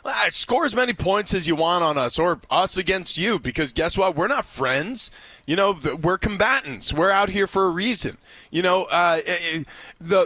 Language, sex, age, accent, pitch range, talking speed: English, male, 20-39, American, 145-175 Hz, 210 wpm